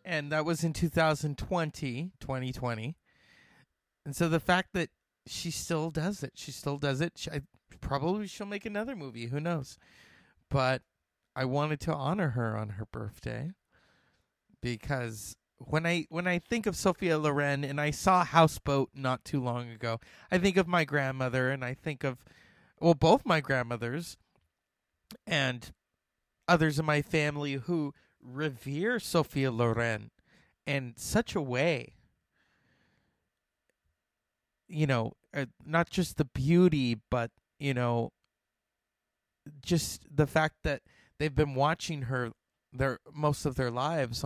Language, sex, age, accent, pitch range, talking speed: English, male, 30-49, American, 120-165 Hz, 140 wpm